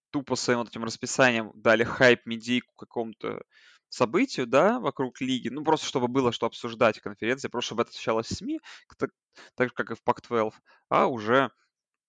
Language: Russian